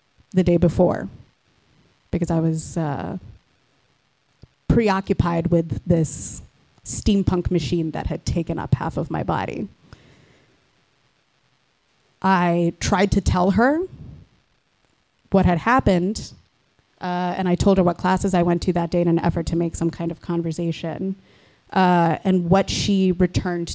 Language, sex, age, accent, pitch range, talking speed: English, female, 20-39, American, 165-190 Hz, 135 wpm